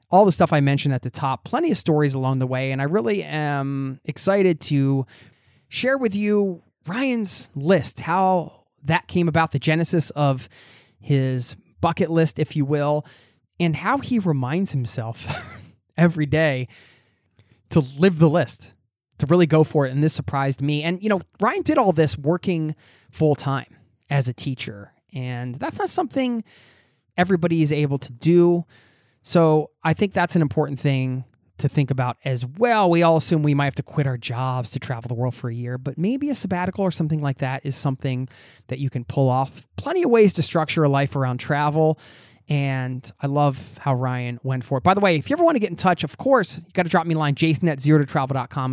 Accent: American